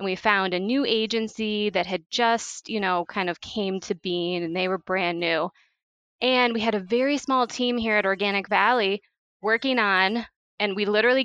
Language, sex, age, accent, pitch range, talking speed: English, female, 20-39, American, 185-225 Hz, 195 wpm